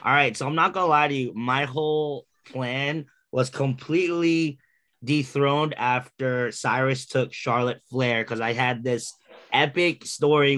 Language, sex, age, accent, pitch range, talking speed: English, male, 20-39, American, 115-140 Hz, 155 wpm